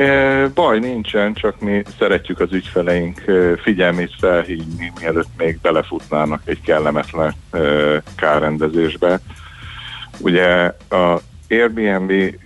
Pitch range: 75-95 Hz